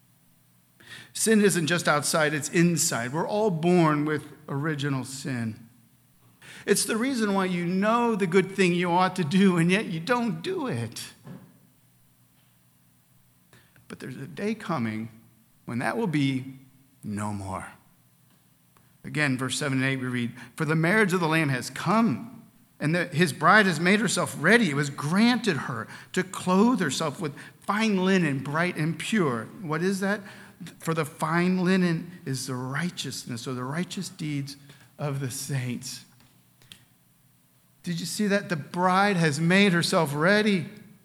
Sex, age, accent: male, 50-69, American